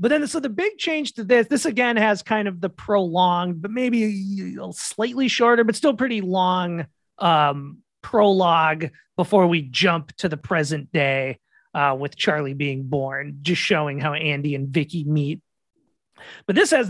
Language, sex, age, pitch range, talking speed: English, male, 30-49, 150-200 Hz, 165 wpm